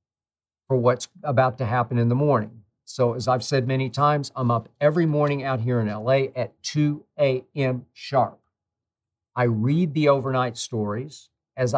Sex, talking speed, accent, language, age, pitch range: male, 165 wpm, American, English, 50-69, 120-140 Hz